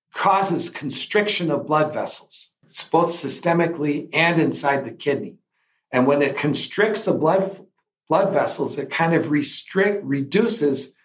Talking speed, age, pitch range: 130 wpm, 60-79, 140-175 Hz